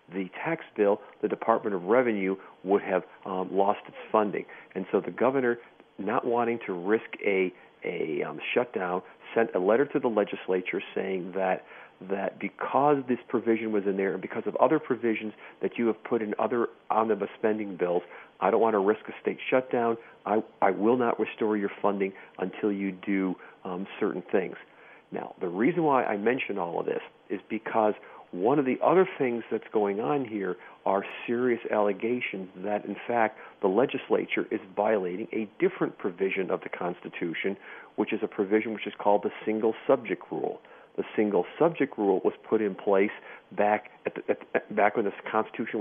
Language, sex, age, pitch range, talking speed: English, male, 50-69, 100-120 Hz, 180 wpm